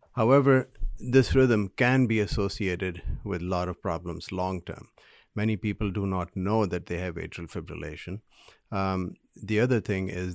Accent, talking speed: Indian, 155 wpm